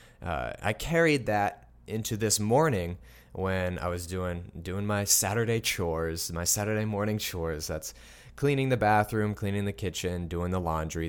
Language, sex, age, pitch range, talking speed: English, male, 20-39, 100-130 Hz, 155 wpm